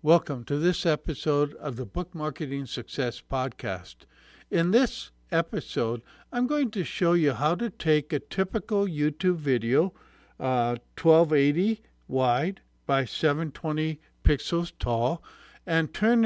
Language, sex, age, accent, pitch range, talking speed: English, male, 60-79, American, 130-170 Hz, 125 wpm